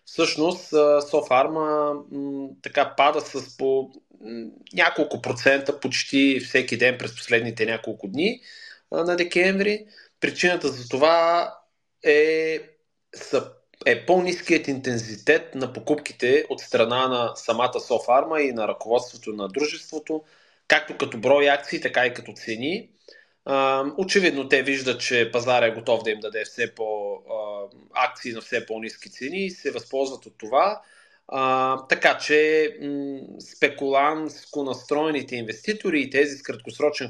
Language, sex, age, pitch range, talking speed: Bulgarian, male, 30-49, 125-155 Hz, 125 wpm